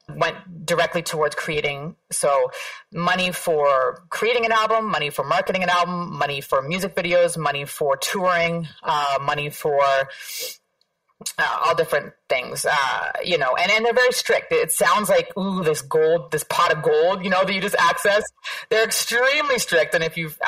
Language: English